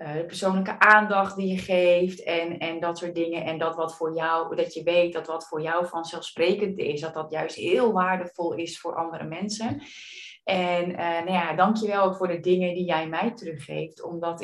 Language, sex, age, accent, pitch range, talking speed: Dutch, female, 30-49, Dutch, 165-195 Hz, 210 wpm